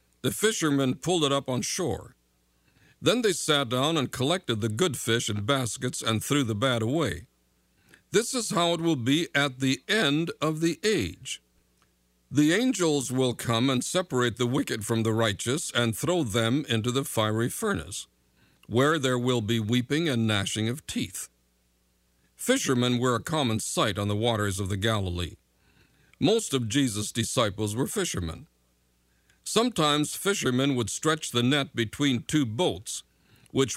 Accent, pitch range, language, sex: American, 110-145 Hz, English, male